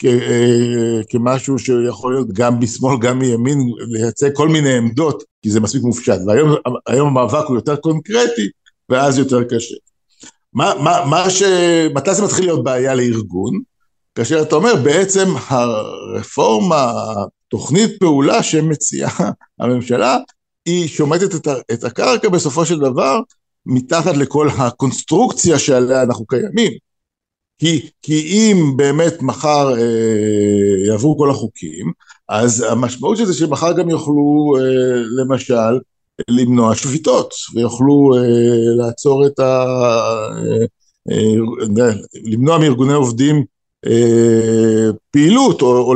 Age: 60-79